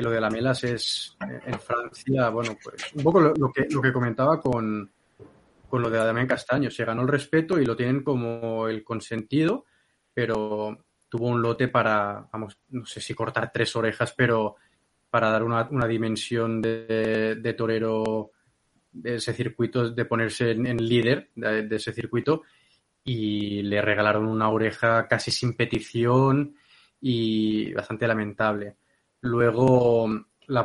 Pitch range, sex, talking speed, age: 110-120 Hz, male, 155 wpm, 20-39